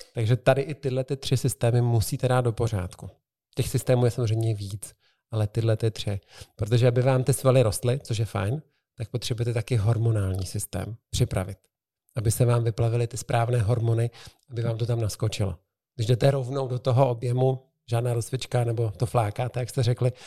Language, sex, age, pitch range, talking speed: Czech, male, 50-69, 110-125 Hz, 180 wpm